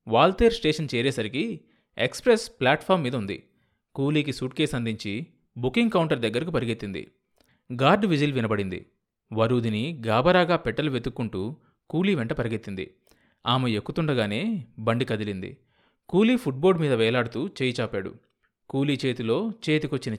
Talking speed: 115 wpm